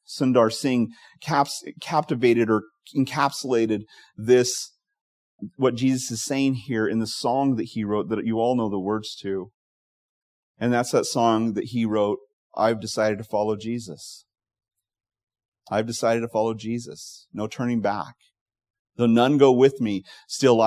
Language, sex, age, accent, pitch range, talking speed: English, male, 30-49, American, 105-135 Hz, 145 wpm